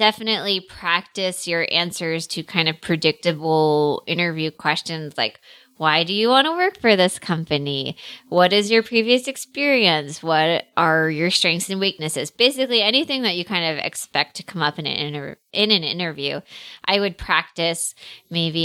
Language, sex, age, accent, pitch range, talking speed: English, female, 20-39, American, 165-200 Hz, 165 wpm